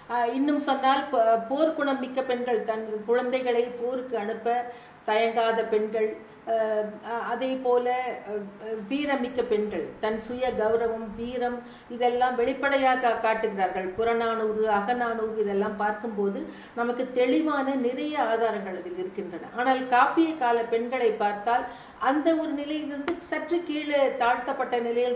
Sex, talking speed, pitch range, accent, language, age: female, 105 wpm, 220-270 Hz, native, Tamil, 50-69